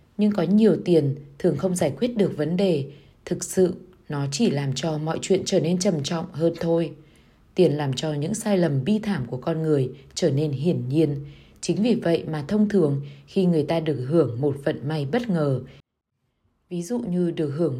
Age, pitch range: 20-39, 145-180 Hz